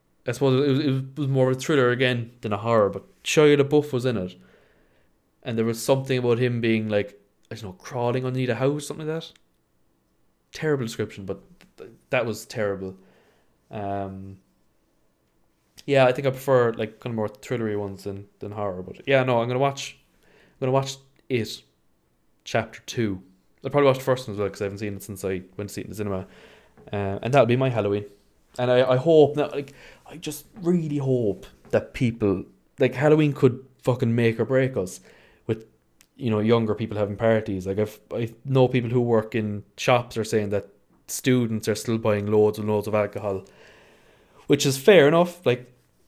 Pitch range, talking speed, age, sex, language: 105-130 Hz, 200 wpm, 20-39, male, English